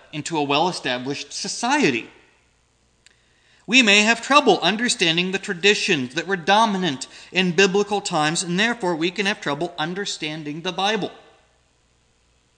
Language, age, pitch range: English, 30-49, 145-200 Hz